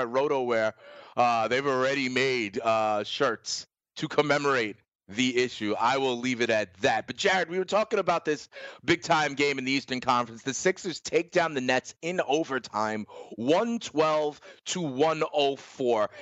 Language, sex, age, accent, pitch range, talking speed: English, male, 30-49, American, 140-225 Hz, 155 wpm